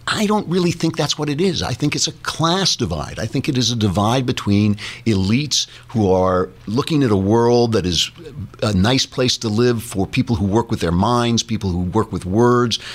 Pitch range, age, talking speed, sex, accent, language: 100-135 Hz, 50-69, 220 wpm, male, American, English